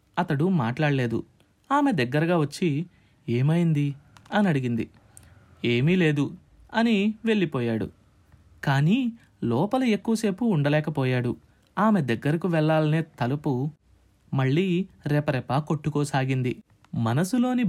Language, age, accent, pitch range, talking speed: Telugu, 30-49, native, 140-205 Hz, 80 wpm